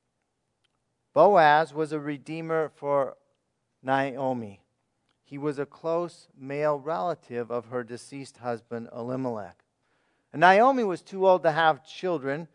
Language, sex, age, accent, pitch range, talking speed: English, male, 40-59, American, 120-160 Hz, 120 wpm